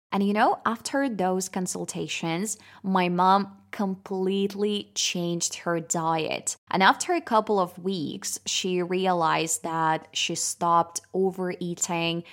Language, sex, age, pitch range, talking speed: Russian, female, 20-39, 170-205 Hz, 115 wpm